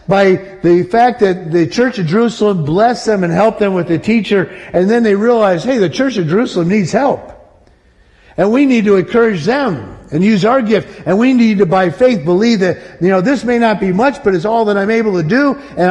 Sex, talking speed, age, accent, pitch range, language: male, 230 wpm, 50-69, American, 150-210 Hz, English